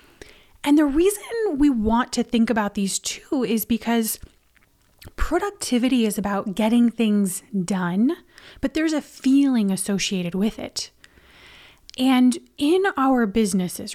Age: 30-49